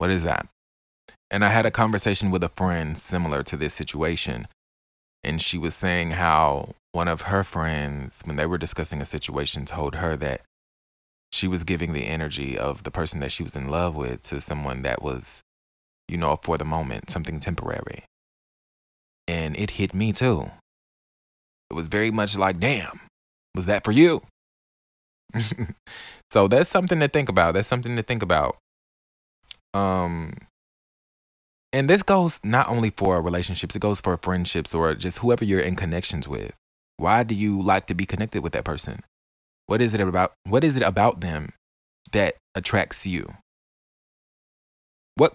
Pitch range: 75-100 Hz